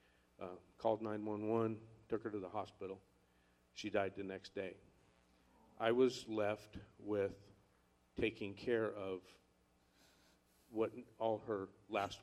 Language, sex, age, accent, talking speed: English, male, 50-69, American, 120 wpm